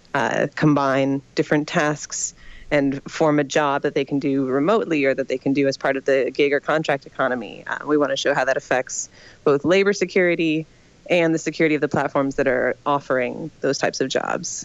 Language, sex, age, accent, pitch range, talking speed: English, female, 30-49, American, 135-155 Hz, 205 wpm